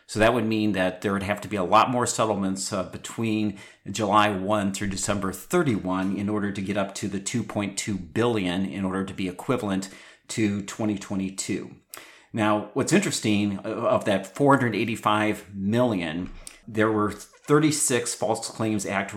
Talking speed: 155 wpm